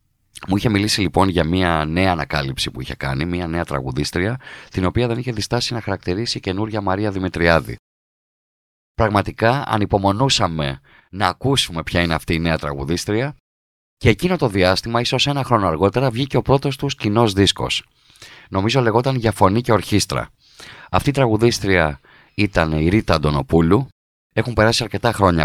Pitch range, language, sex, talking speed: 85-115 Hz, Greek, male, 155 wpm